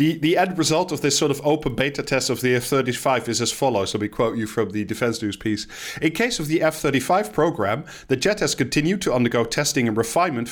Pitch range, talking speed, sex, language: 125-160 Hz, 235 wpm, male, English